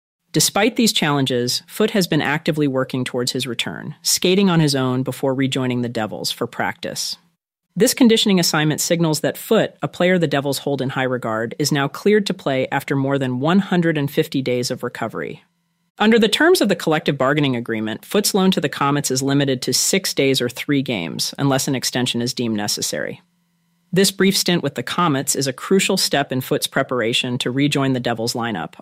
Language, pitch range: English, 130-170 Hz